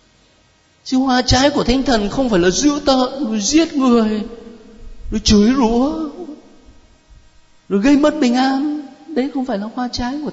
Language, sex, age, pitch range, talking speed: Vietnamese, male, 50-69, 165-250 Hz, 165 wpm